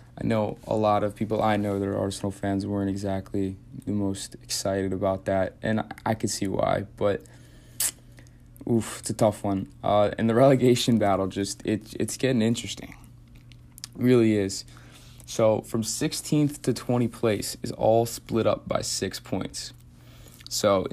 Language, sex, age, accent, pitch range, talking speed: English, male, 20-39, American, 100-120 Hz, 165 wpm